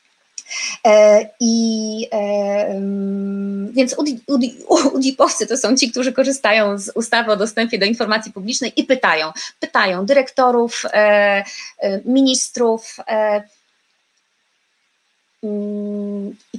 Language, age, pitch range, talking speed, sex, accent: Polish, 30-49, 210-260 Hz, 100 wpm, female, native